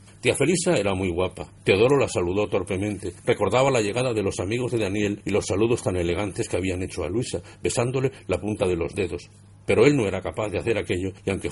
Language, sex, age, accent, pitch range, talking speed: Spanish, male, 50-69, Spanish, 90-115 Hz, 225 wpm